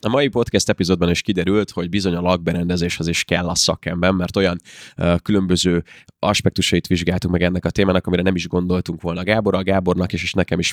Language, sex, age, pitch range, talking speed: Hungarian, male, 20-39, 85-105 Hz, 200 wpm